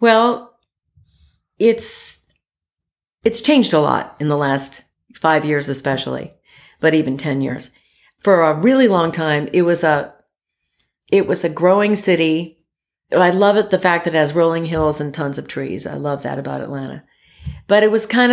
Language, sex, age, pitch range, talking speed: English, female, 50-69, 145-175 Hz, 170 wpm